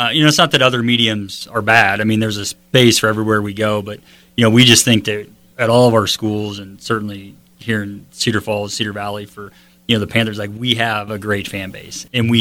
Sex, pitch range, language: male, 105-125 Hz, English